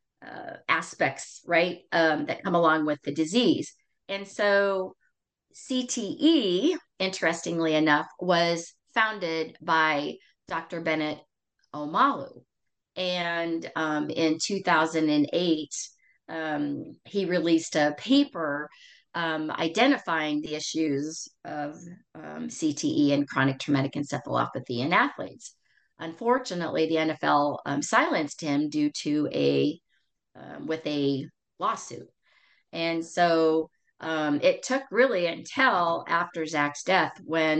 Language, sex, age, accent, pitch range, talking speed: English, female, 40-59, American, 150-195 Hz, 105 wpm